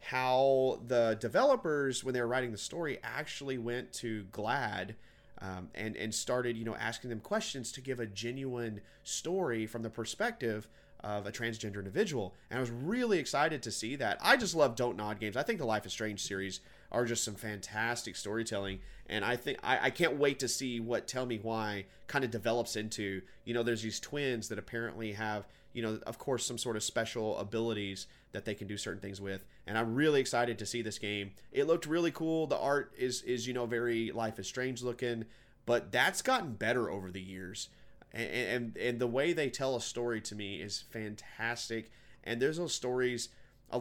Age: 30-49